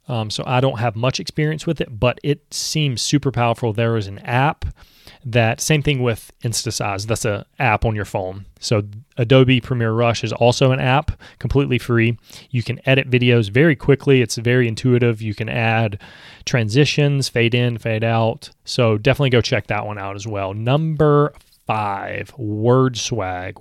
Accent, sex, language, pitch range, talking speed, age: American, male, English, 110-130 Hz, 175 wpm, 20-39